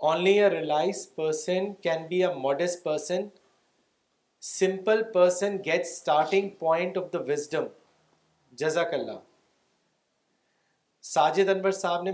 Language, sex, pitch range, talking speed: Urdu, male, 155-190 Hz, 110 wpm